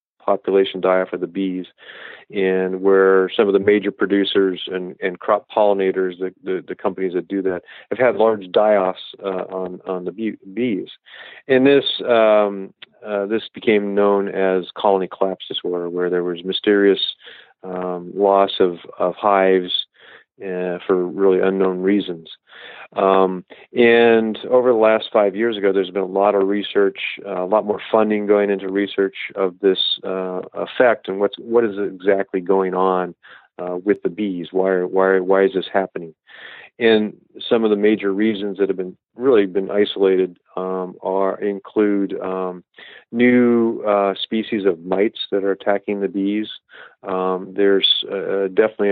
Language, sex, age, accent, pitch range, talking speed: English, male, 40-59, American, 95-100 Hz, 160 wpm